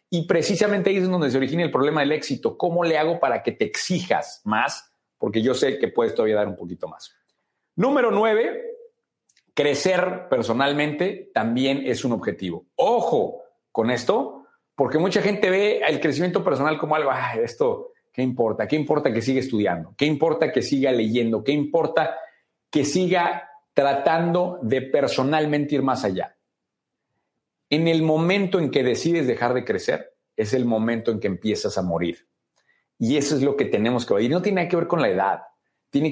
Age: 50-69